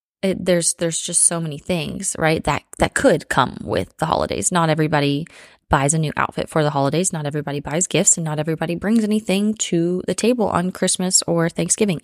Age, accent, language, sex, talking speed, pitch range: 20-39, American, English, female, 195 wpm, 150-180 Hz